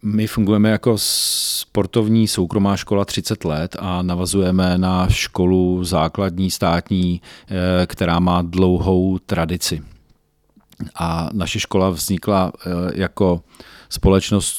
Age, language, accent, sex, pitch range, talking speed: 40-59, Czech, native, male, 85-95 Hz, 100 wpm